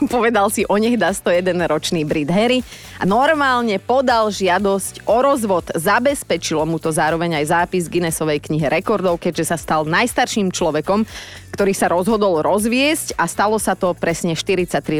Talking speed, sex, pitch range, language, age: 150 wpm, female, 160-215 Hz, Slovak, 30-49